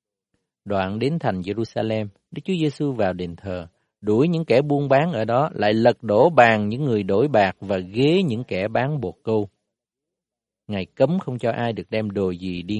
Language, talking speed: Vietnamese, 195 wpm